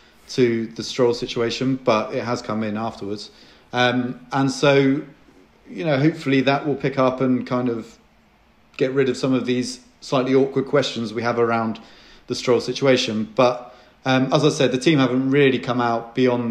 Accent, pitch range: British, 115-130 Hz